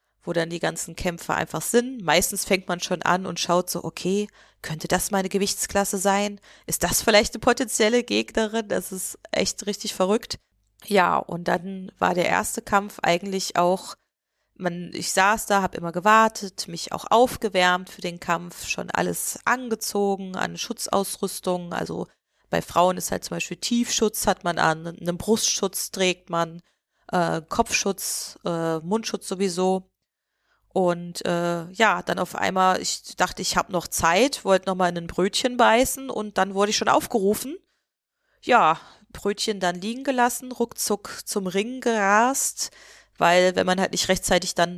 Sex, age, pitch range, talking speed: female, 30-49, 175-215 Hz, 160 wpm